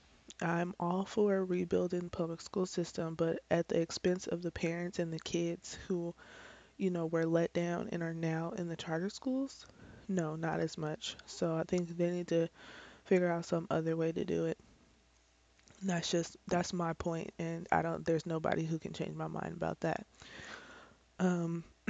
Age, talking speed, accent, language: 20-39, 185 wpm, American, English